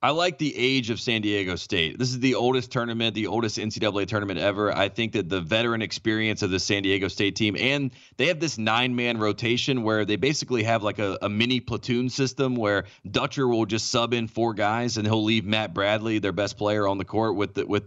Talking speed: 230 wpm